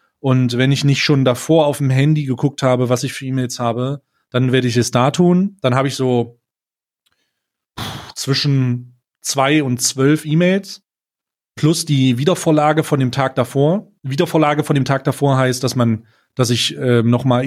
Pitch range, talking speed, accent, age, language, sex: 125-145 Hz, 175 wpm, German, 30-49, German, male